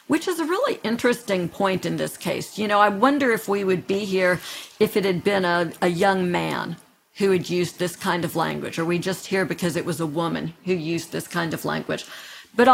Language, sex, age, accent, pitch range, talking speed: English, female, 50-69, American, 180-220 Hz, 230 wpm